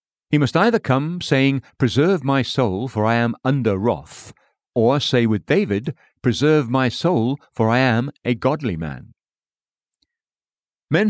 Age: 50-69